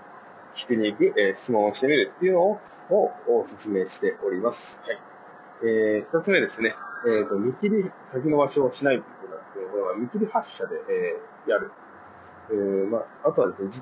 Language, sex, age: Japanese, male, 30-49